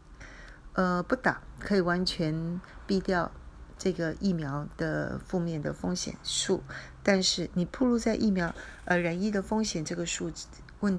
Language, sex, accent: Chinese, female, native